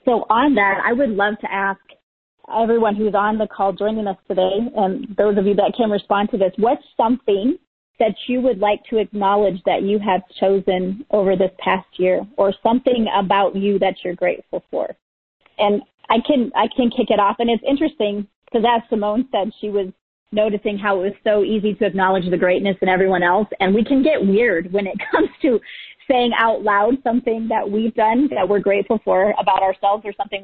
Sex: female